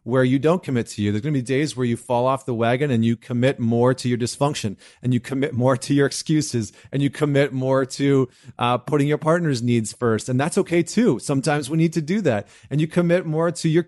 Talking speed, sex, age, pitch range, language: 250 wpm, male, 30-49, 115-140 Hz, English